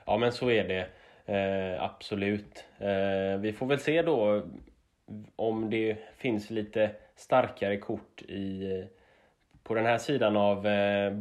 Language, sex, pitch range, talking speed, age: Swedish, male, 95-120 Hz, 140 wpm, 10-29